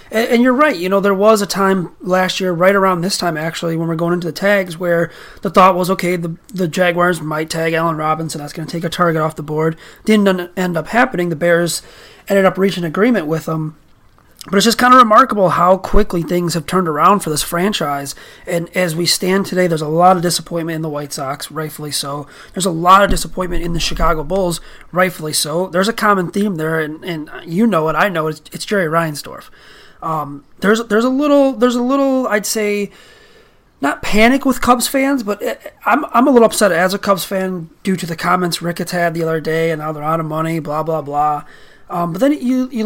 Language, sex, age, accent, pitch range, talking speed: English, male, 30-49, American, 165-200 Hz, 230 wpm